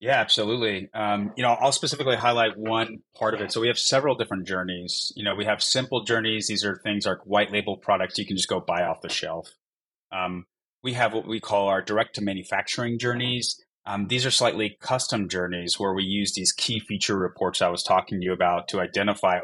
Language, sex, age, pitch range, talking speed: English, male, 30-49, 95-115 Hz, 220 wpm